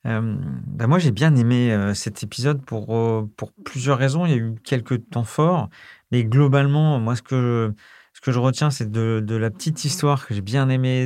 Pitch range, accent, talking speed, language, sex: 110-135 Hz, French, 220 wpm, French, male